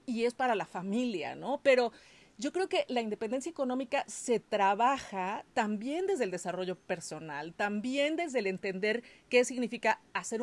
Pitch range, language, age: 195-255 Hz, Spanish, 40-59